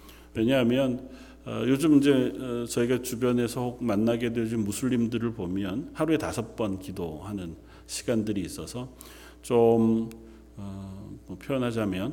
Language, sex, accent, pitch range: Korean, male, native, 100-130 Hz